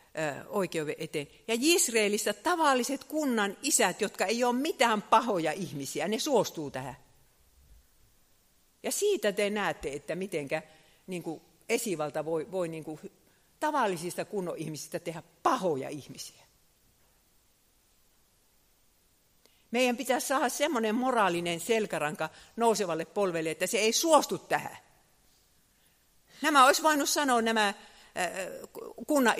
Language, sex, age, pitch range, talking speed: Finnish, female, 50-69, 170-250 Hz, 105 wpm